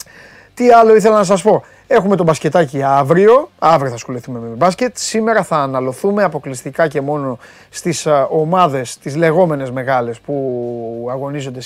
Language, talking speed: Greek, 145 wpm